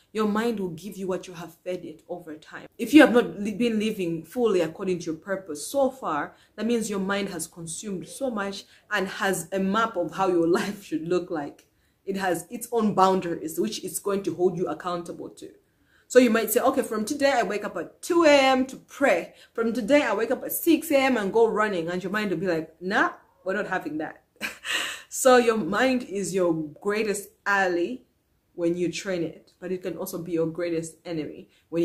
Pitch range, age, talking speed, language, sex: 170-225 Hz, 20-39, 215 wpm, English, female